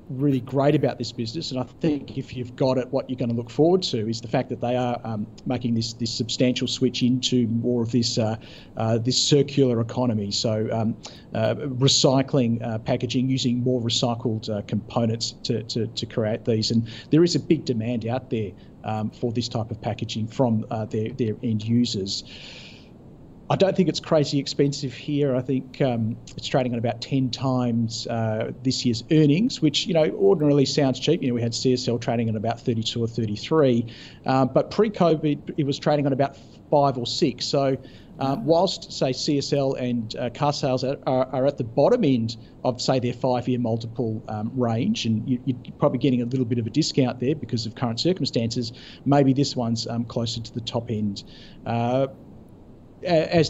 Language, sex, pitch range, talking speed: English, male, 115-140 Hz, 190 wpm